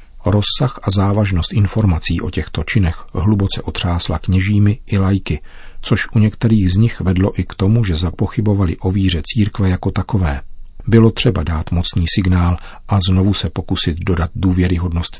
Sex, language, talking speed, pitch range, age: male, Czech, 155 wpm, 90-105 Hz, 40-59